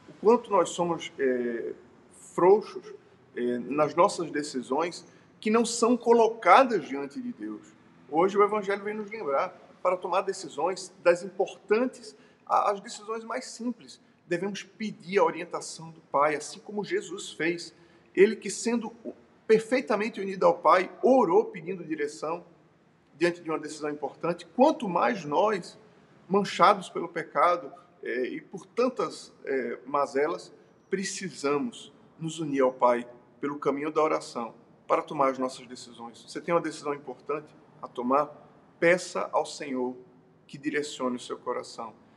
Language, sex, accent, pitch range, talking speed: Portuguese, male, Brazilian, 145-210 Hz, 140 wpm